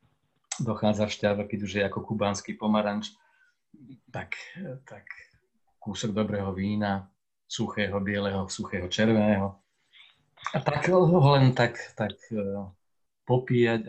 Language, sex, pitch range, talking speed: Slovak, male, 105-155 Hz, 95 wpm